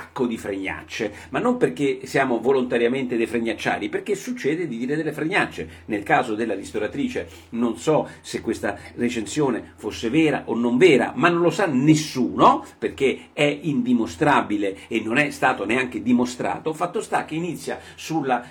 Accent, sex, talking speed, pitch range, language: native, male, 155 wpm, 125-185 Hz, Italian